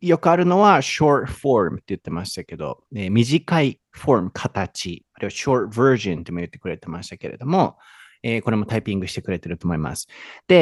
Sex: male